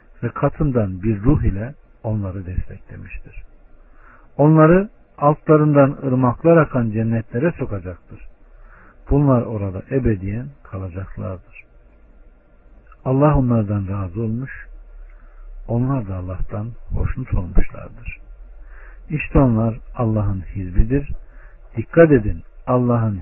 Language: Turkish